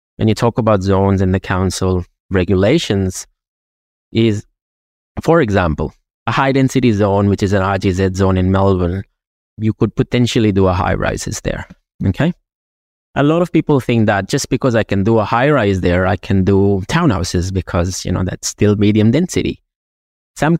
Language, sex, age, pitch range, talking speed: English, male, 20-39, 95-115 Hz, 165 wpm